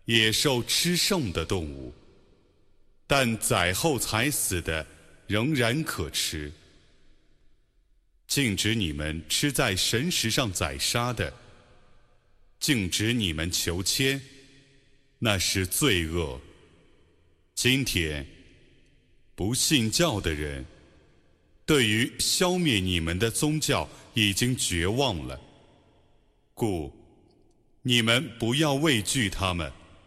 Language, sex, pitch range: Arabic, male, 85-135 Hz